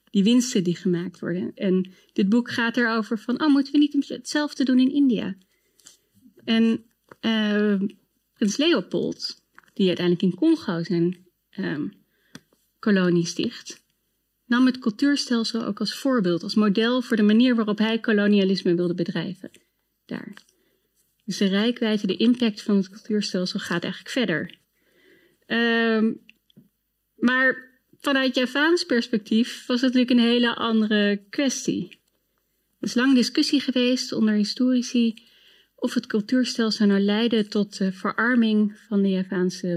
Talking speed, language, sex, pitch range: 135 wpm, Dutch, female, 190-240 Hz